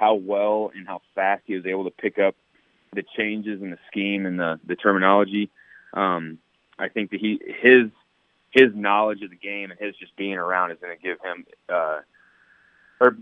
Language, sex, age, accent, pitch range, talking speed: English, male, 20-39, American, 95-105 Hz, 190 wpm